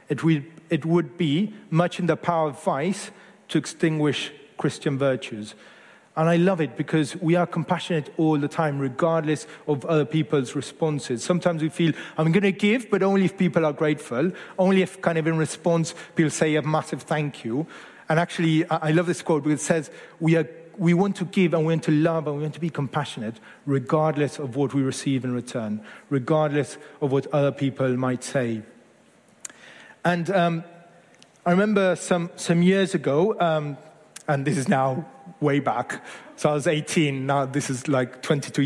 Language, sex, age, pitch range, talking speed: English, male, 40-59, 140-170 Hz, 180 wpm